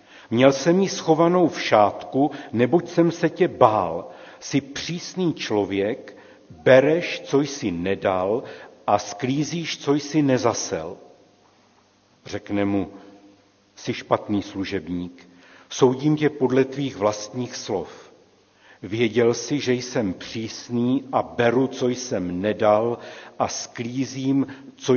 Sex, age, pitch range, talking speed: male, 60-79, 105-135 Hz, 115 wpm